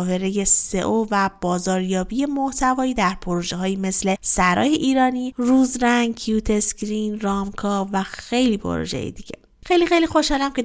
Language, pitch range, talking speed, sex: Persian, 210-275 Hz, 135 wpm, female